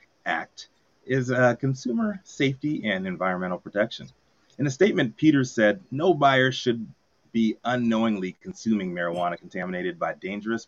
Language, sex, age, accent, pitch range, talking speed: English, male, 30-49, American, 95-130 Hz, 130 wpm